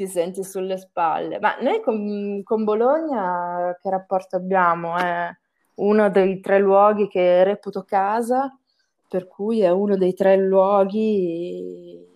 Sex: female